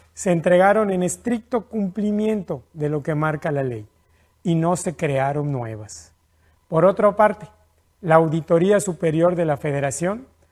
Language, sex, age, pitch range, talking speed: Spanish, male, 50-69, 130-190 Hz, 145 wpm